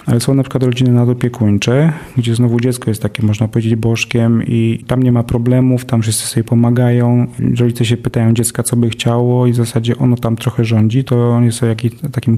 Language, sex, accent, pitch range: English, male, Polish, 115-130 Hz